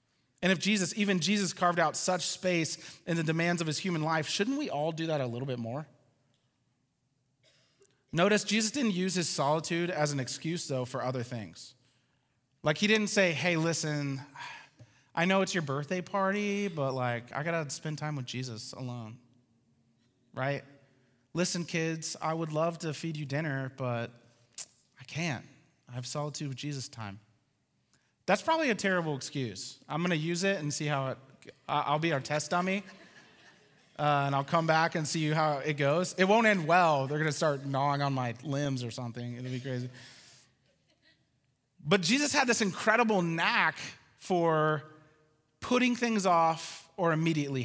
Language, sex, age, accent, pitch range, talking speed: English, male, 30-49, American, 130-175 Hz, 170 wpm